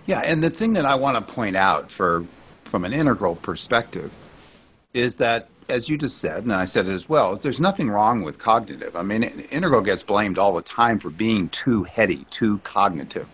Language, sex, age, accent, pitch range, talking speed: English, male, 50-69, American, 100-140 Hz, 205 wpm